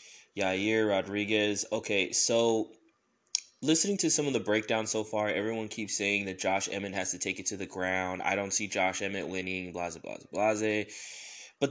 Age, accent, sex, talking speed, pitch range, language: 20-39, American, male, 185 wpm, 95-120 Hz, English